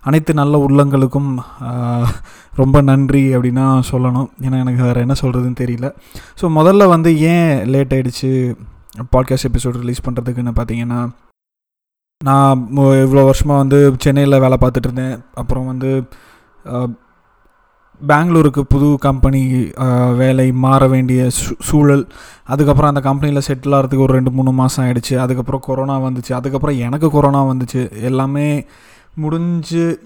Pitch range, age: 130-145 Hz, 20-39